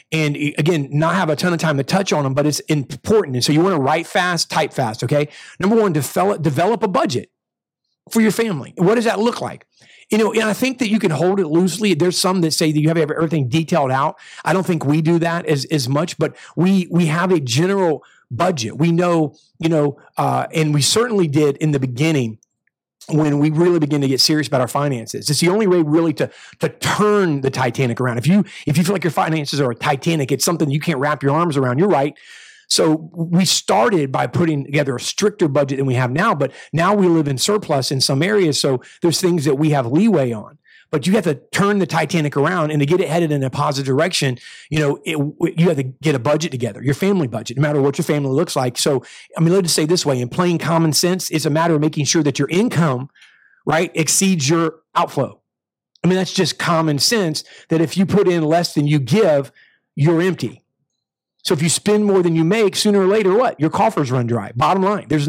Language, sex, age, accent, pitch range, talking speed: English, male, 40-59, American, 145-180 Hz, 235 wpm